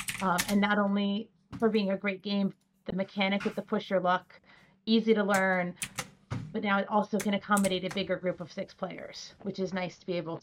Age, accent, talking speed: 30-49, American, 215 wpm